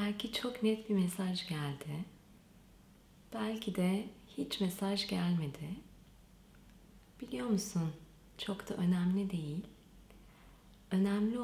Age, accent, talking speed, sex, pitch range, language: 30-49, native, 95 wpm, female, 185-215 Hz, Turkish